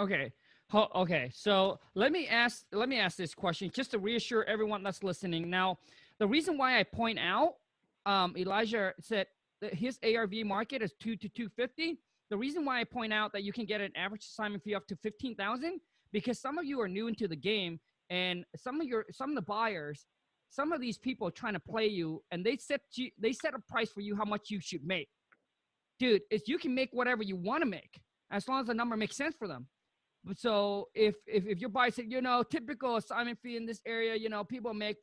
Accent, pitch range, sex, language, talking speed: American, 190-240 Hz, male, English, 225 wpm